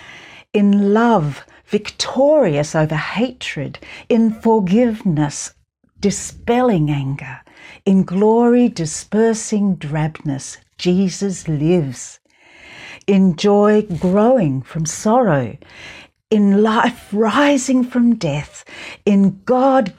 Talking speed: 80 wpm